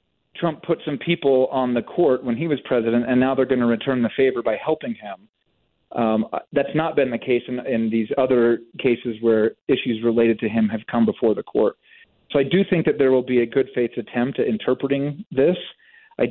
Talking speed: 215 wpm